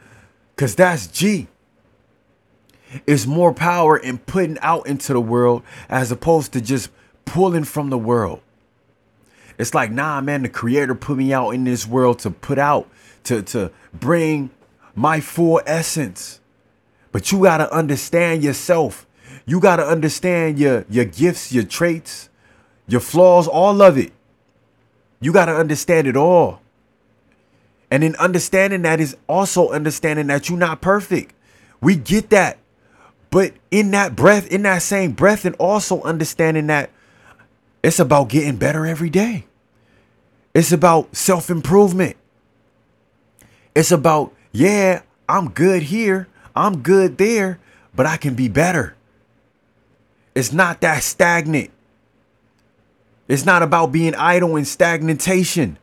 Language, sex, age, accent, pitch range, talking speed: English, male, 30-49, American, 125-175 Hz, 135 wpm